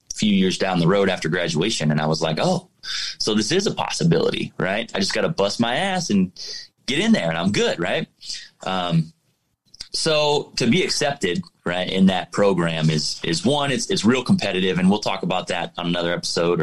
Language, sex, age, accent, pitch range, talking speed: English, male, 20-39, American, 95-125 Hz, 205 wpm